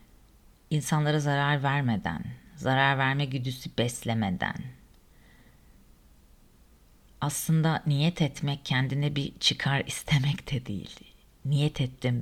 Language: Turkish